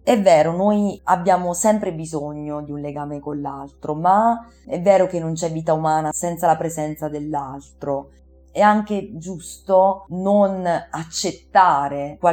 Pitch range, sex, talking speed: 150-185 Hz, female, 135 wpm